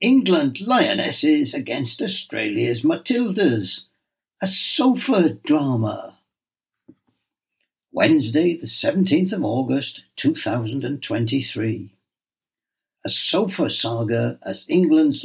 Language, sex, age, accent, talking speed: English, male, 60-79, British, 75 wpm